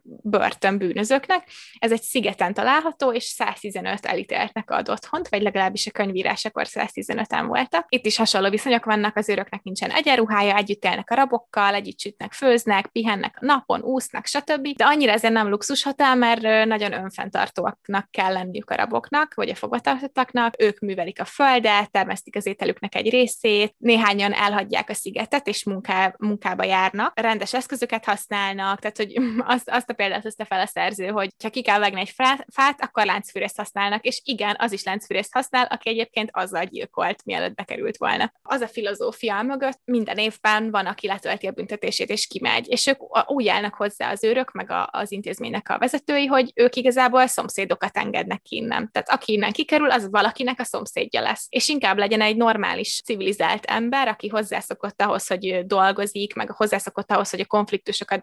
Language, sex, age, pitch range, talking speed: Hungarian, female, 20-39, 200-250 Hz, 165 wpm